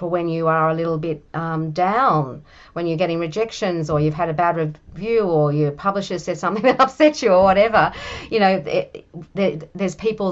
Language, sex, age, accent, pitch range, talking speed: English, female, 40-59, Australian, 155-180 Hz, 185 wpm